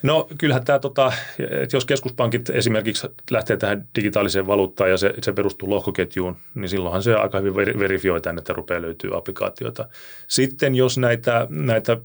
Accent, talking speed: native, 145 wpm